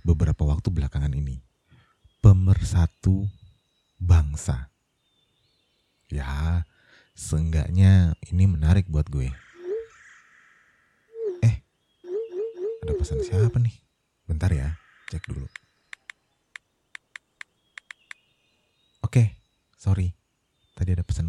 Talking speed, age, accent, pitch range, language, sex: 75 wpm, 30-49, native, 80-100 Hz, Indonesian, male